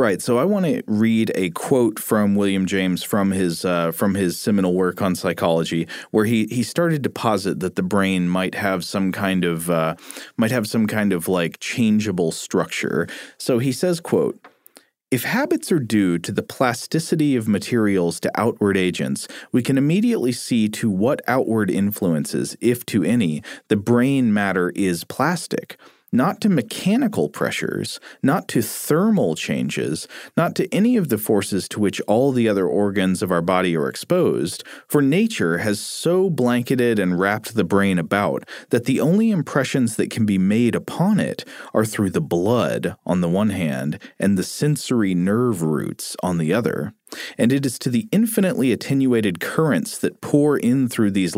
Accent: American